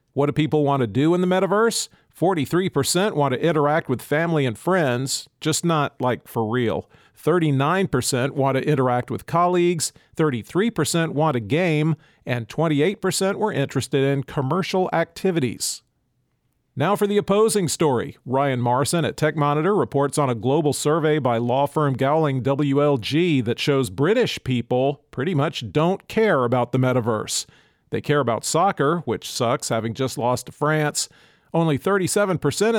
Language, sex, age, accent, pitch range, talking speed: English, male, 40-59, American, 130-165 Hz, 150 wpm